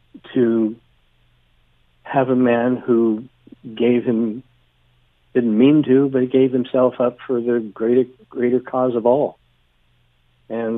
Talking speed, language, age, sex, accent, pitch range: 130 wpm, English, 60-79, male, American, 100-125 Hz